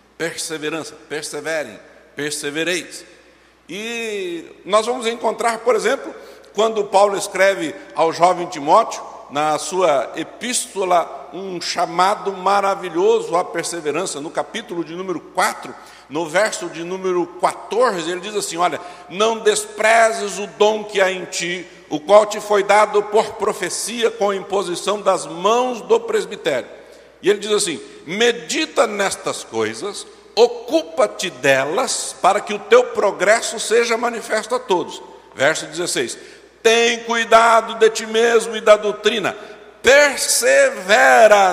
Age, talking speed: 60-79, 125 wpm